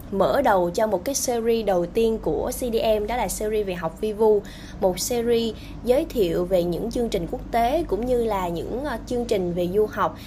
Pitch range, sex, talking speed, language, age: 200-265 Hz, female, 205 wpm, Vietnamese, 20-39